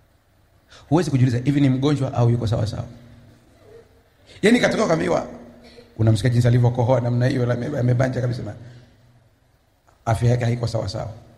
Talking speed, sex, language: 130 wpm, male, Swahili